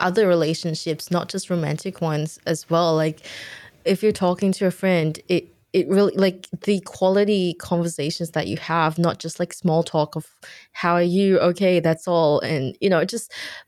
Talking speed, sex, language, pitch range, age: 180 wpm, female, English, 155-190 Hz, 20-39